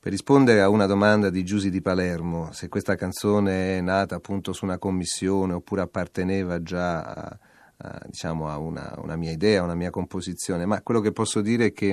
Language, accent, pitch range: Italian, native, 85-100 Hz